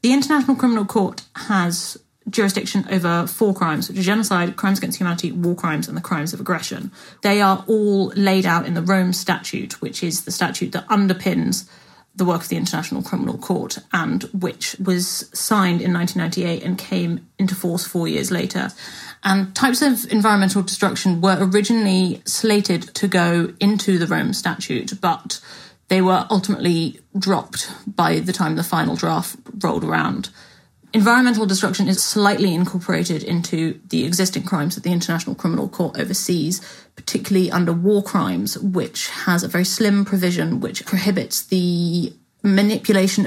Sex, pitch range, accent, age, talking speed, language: female, 175-205 Hz, British, 30-49, 155 wpm, English